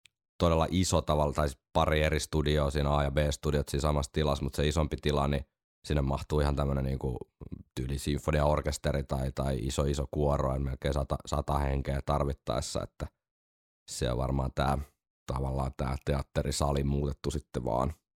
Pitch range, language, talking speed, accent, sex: 70-80 Hz, Finnish, 150 wpm, native, male